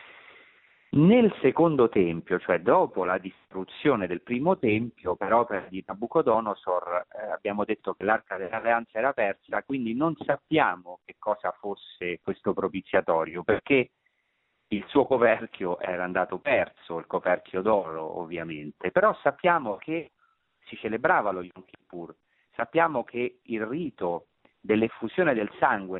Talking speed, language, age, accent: 125 wpm, Italian, 40-59, native